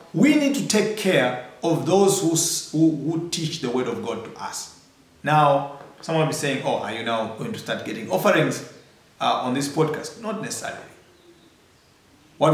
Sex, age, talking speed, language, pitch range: male, 40-59, 175 wpm, English, 140-195 Hz